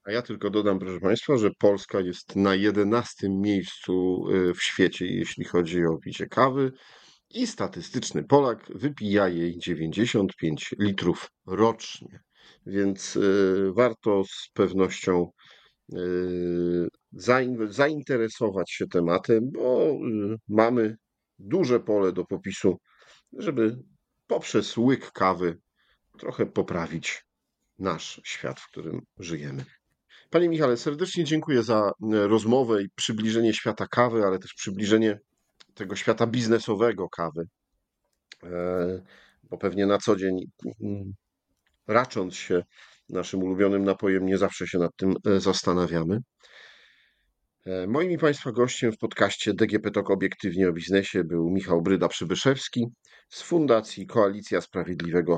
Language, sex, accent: Polish, male, native